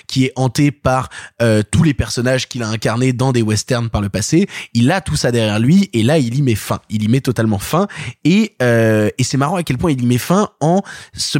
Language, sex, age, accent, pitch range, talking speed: French, male, 20-39, French, 125-170 Hz, 255 wpm